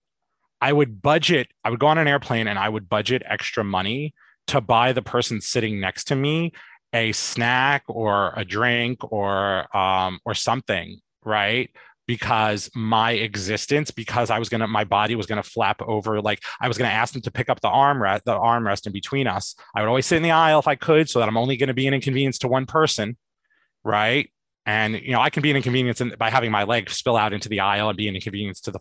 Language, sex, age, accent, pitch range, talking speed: English, male, 30-49, American, 105-135 Hz, 235 wpm